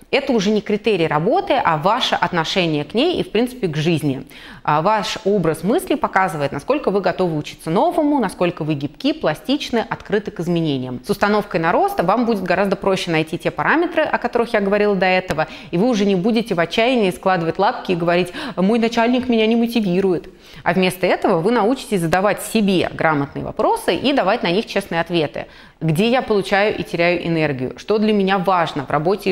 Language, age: Russian, 30-49